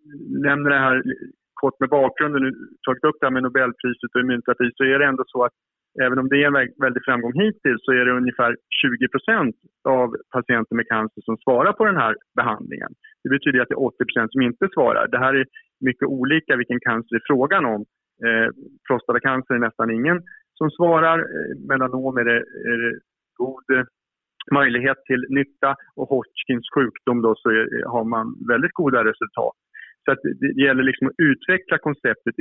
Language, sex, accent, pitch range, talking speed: Swedish, male, Norwegian, 120-145 Hz, 185 wpm